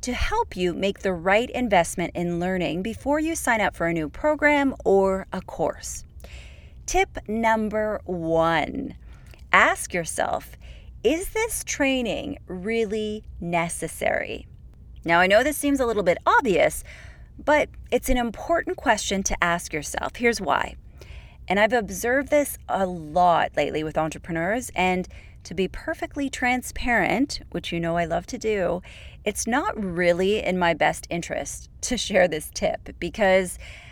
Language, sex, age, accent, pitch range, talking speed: English, female, 30-49, American, 170-250 Hz, 145 wpm